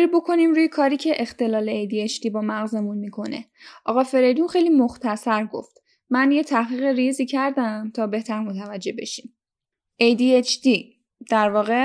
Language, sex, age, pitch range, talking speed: Persian, female, 10-29, 220-285 Hz, 130 wpm